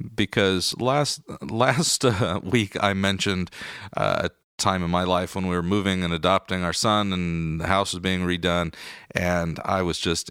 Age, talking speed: 40-59, 180 wpm